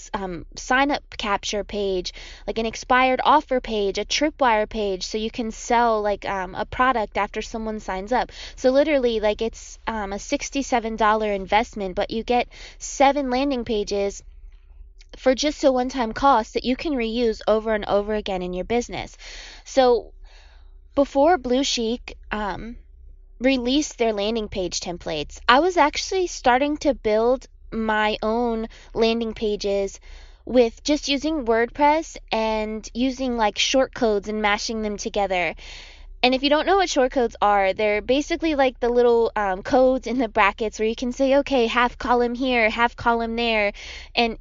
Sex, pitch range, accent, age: female, 205-255 Hz, American, 20-39